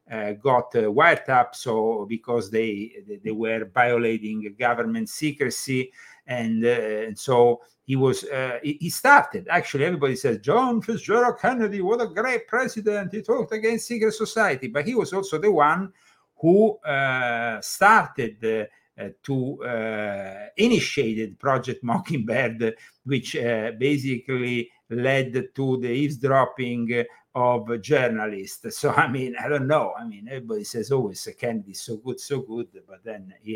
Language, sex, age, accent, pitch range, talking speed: English, male, 50-69, Italian, 115-155 Hz, 145 wpm